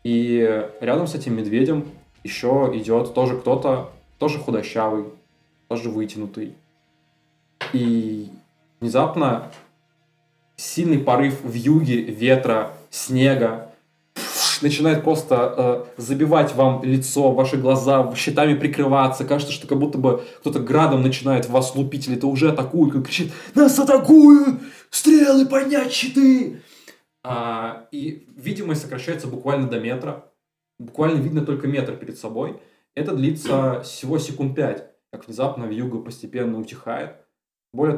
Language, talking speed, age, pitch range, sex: Russian, 120 wpm, 20-39, 115-145 Hz, male